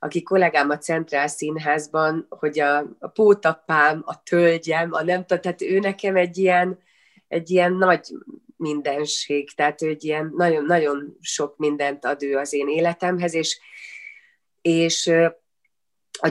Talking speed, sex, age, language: 135 wpm, female, 30-49, Hungarian